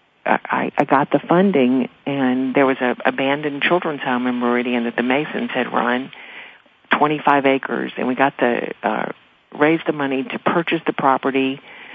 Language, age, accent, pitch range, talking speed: English, 50-69, American, 125-160 Hz, 165 wpm